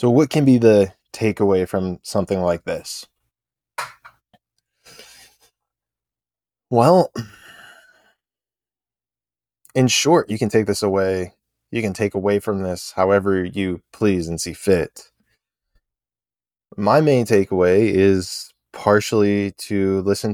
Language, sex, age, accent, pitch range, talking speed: English, male, 20-39, American, 95-115 Hz, 110 wpm